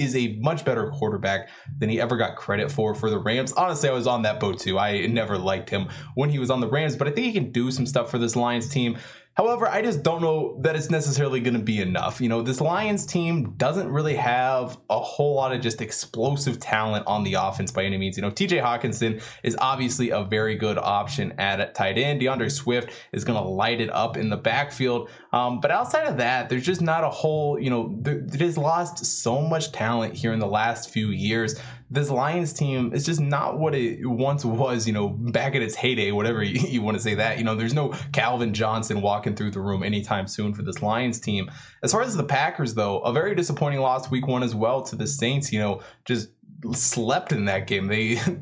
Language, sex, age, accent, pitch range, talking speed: English, male, 20-39, American, 110-145 Hz, 235 wpm